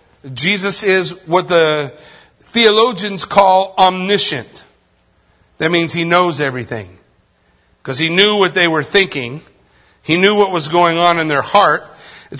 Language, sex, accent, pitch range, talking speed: English, male, American, 165-235 Hz, 140 wpm